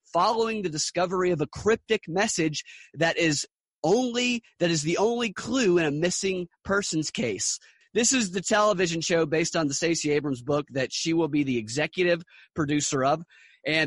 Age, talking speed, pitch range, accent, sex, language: 30-49, 175 wpm, 135-180 Hz, American, male, English